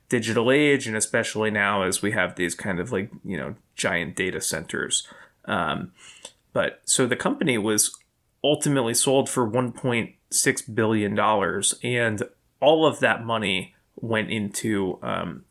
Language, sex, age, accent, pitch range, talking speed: English, male, 20-39, American, 110-130 Hz, 150 wpm